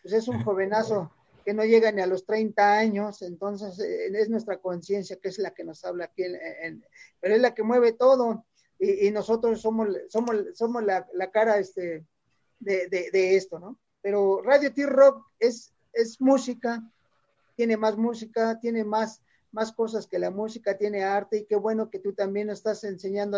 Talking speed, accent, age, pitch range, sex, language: 185 wpm, Mexican, 40-59, 190-220 Hz, male, English